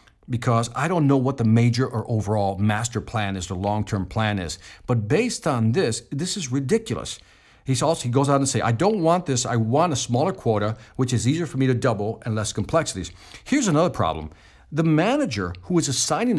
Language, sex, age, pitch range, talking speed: English, male, 50-69, 105-140 Hz, 210 wpm